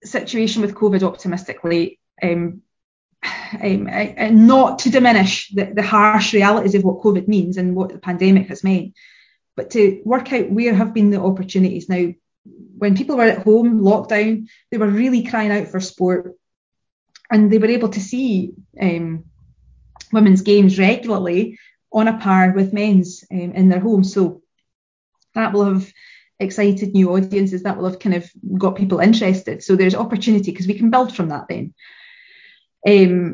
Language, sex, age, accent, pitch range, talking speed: English, female, 30-49, British, 185-215 Hz, 165 wpm